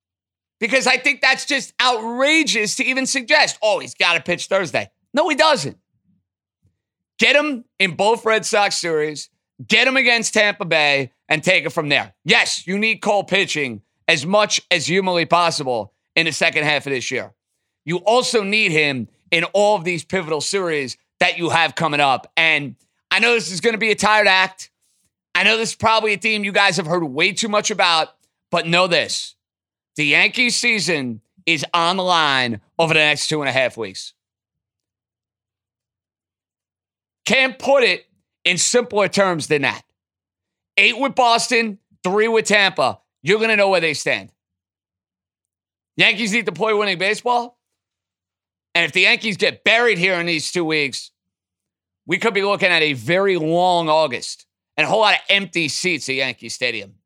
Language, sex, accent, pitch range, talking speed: English, male, American, 135-215 Hz, 175 wpm